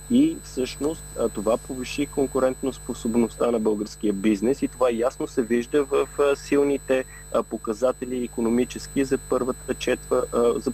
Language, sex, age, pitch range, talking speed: Bulgarian, male, 30-49, 115-140 Hz, 125 wpm